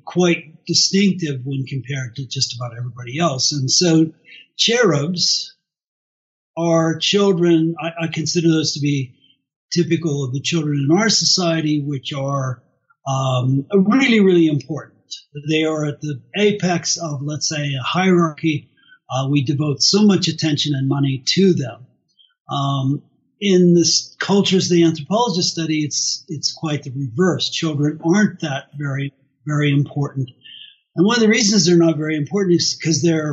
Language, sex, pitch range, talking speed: English, male, 135-165 Hz, 150 wpm